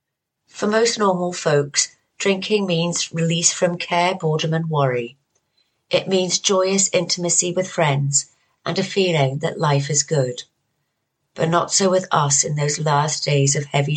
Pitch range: 140-175 Hz